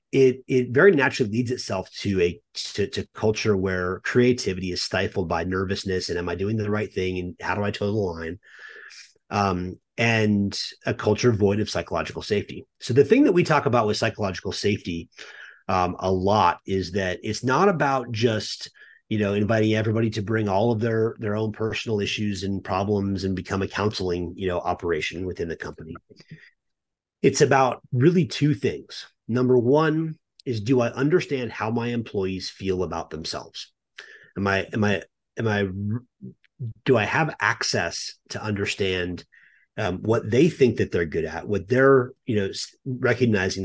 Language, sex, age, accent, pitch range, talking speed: English, male, 30-49, American, 95-125 Hz, 170 wpm